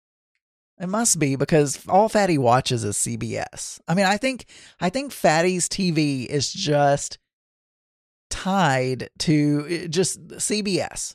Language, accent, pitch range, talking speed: English, American, 140-180 Hz, 125 wpm